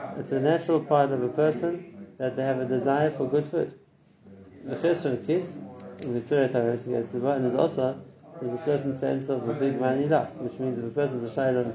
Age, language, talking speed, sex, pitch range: 30-49, English, 210 wpm, male, 125-150 Hz